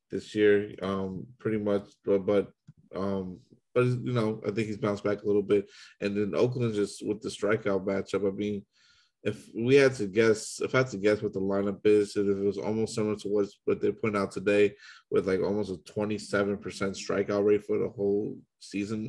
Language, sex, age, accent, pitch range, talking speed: English, male, 20-39, American, 100-105 Hz, 210 wpm